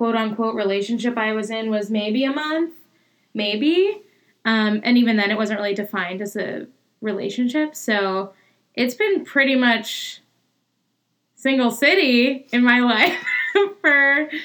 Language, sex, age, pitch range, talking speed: English, female, 10-29, 210-250 Hz, 135 wpm